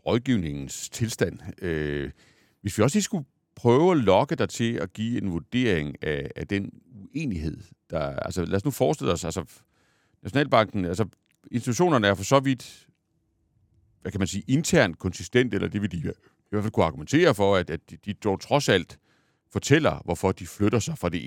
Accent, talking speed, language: native, 175 wpm, Danish